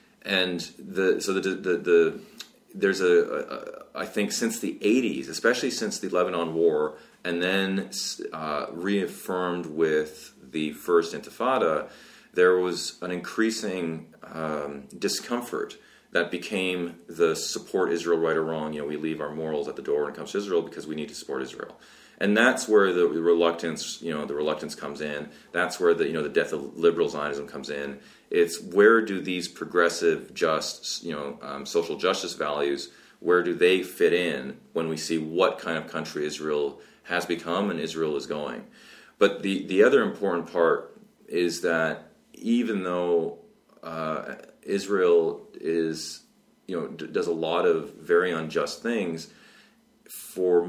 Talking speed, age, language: 165 wpm, 30-49, English